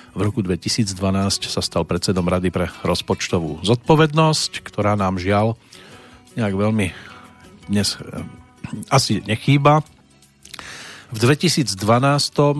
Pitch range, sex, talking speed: 100-115 Hz, male, 95 wpm